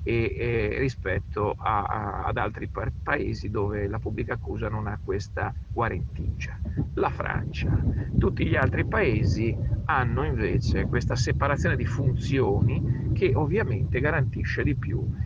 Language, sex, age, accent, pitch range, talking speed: Italian, male, 50-69, native, 105-120 Hz, 135 wpm